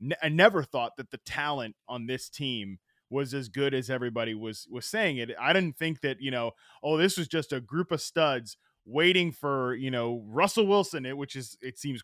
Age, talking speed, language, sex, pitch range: 20-39, 215 wpm, English, male, 125-160 Hz